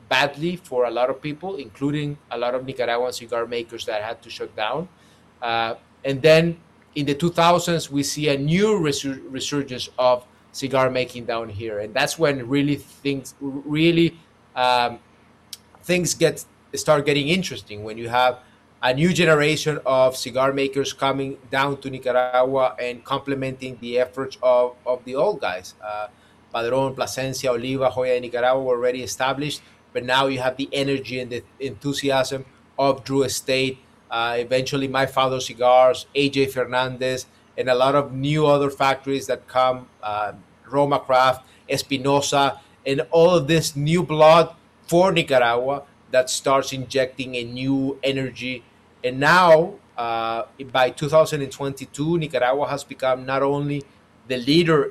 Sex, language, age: male, English, 30-49